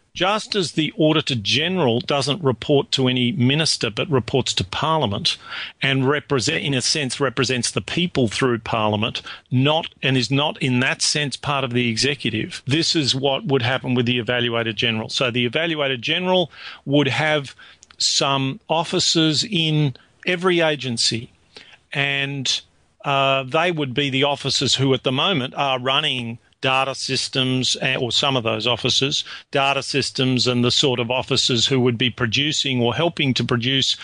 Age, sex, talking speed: 40-59, male, 155 wpm